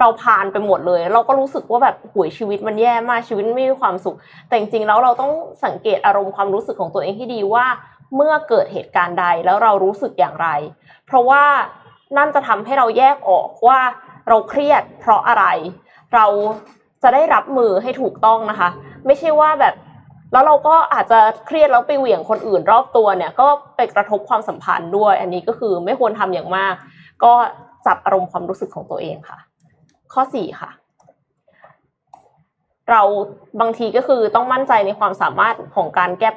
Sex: female